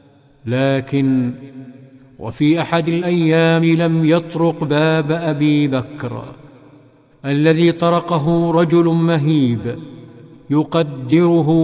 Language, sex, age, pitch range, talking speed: Arabic, male, 50-69, 140-160 Hz, 70 wpm